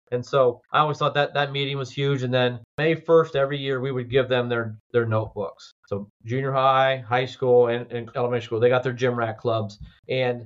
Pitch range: 125-155 Hz